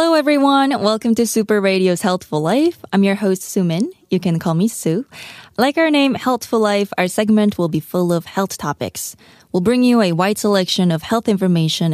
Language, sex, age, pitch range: Korean, female, 20-39, 170-215 Hz